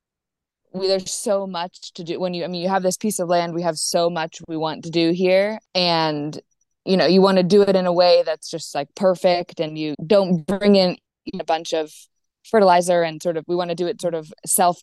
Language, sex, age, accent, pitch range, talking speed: English, female, 20-39, American, 165-185 Hz, 240 wpm